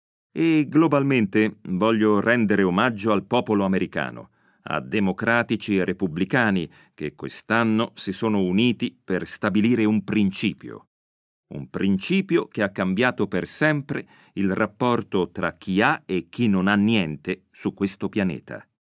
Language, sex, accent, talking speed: Italian, male, native, 130 wpm